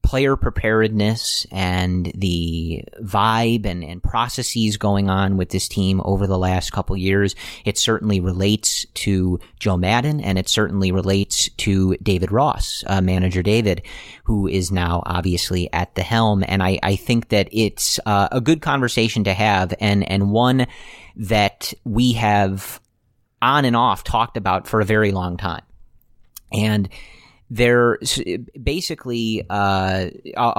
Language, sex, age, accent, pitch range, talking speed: English, male, 30-49, American, 95-110 Hz, 145 wpm